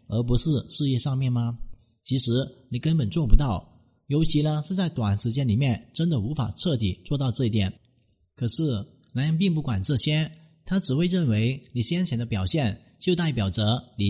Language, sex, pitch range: Chinese, male, 115-155 Hz